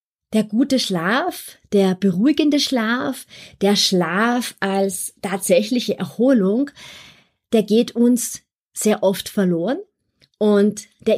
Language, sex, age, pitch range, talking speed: German, female, 30-49, 195-240 Hz, 100 wpm